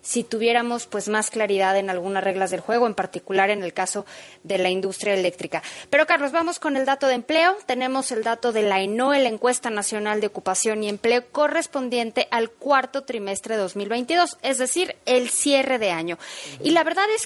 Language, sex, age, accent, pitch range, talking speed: Spanish, female, 20-39, Mexican, 220-290 Hz, 195 wpm